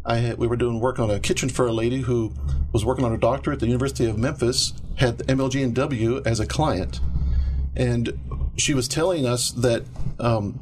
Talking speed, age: 210 wpm, 50-69